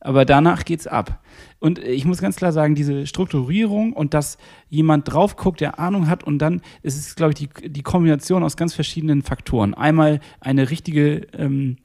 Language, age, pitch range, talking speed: German, 40-59, 135-165 Hz, 185 wpm